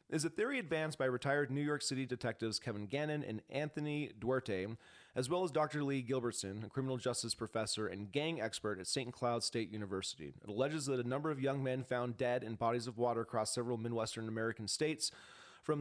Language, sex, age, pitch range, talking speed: English, male, 30-49, 110-140 Hz, 200 wpm